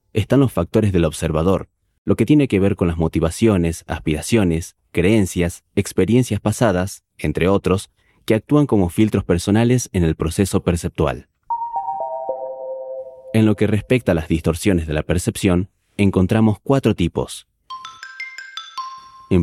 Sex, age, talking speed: male, 30-49, 130 wpm